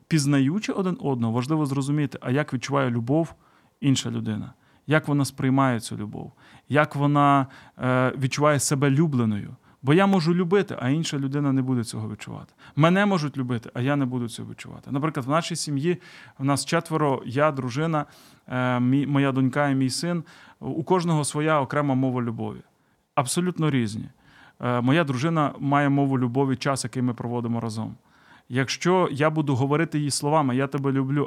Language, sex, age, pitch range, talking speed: Ukrainian, male, 30-49, 125-150 Hz, 155 wpm